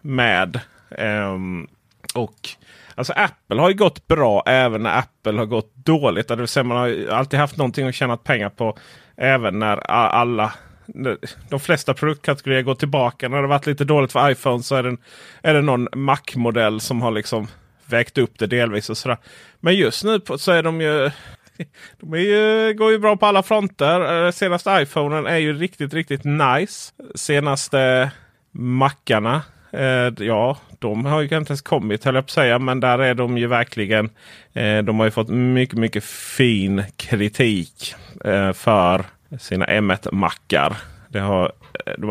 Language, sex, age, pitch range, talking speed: Swedish, male, 30-49, 110-145 Hz, 175 wpm